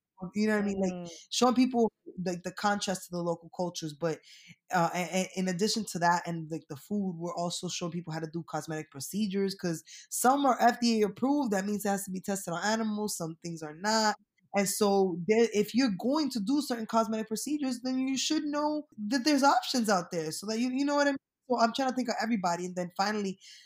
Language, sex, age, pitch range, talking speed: English, female, 20-39, 165-210 Hz, 240 wpm